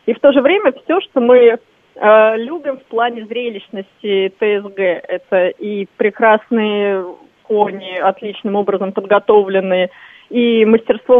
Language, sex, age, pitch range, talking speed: Russian, female, 20-39, 200-255 Hz, 125 wpm